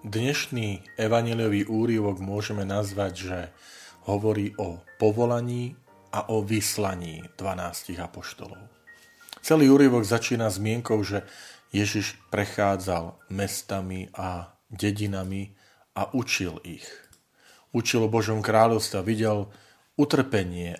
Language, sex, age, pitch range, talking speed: Slovak, male, 40-59, 95-115 Hz, 100 wpm